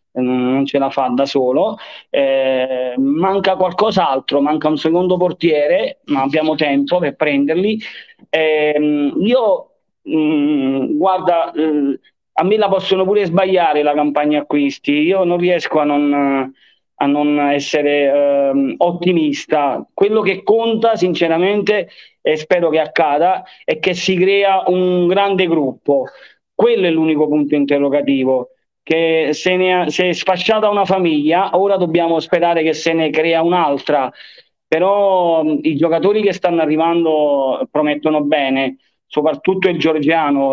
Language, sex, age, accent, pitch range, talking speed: Italian, male, 40-59, native, 140-180 Hz, 125 wpm